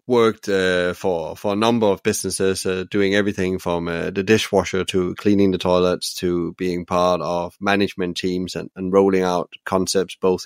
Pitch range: 90-105 Hz